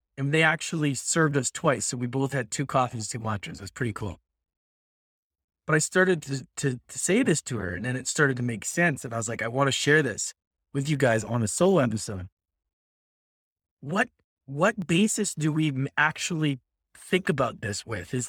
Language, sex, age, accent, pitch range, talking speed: English, male, 30-49, American, 110-175 Hz, 205 wpm